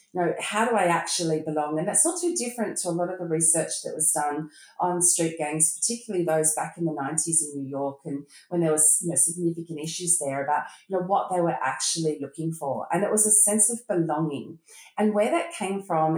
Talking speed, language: 235 wpm, English